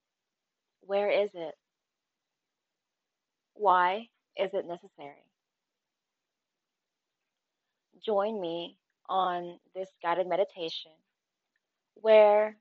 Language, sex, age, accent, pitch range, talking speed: English, female, 20-39, American, 165-210 Hz, 65 wpm